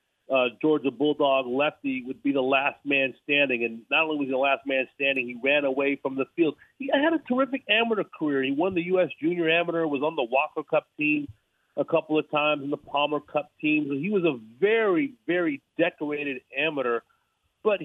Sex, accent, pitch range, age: male, American, 140-180 Hz, 40-59